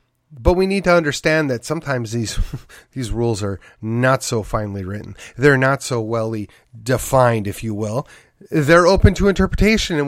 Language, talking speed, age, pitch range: English, 165 wpm, 30-49, 120-170 Hz